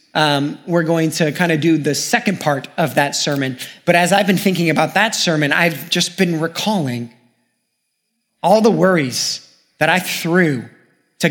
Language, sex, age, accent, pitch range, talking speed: English, male, 30-49, American, 140-185 Hz, 170 wpm